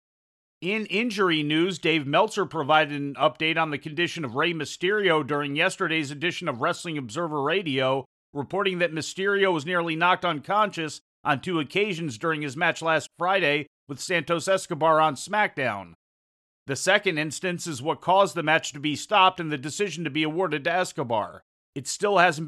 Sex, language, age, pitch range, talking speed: male, English, 40-59, 145-180 Hz, 170 wpm